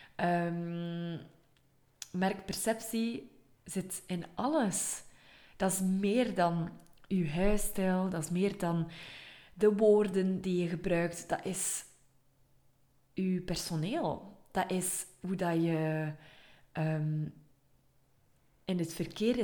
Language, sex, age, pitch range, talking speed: Dutch, female, 20-39, 165-205 Hz, 100 wpm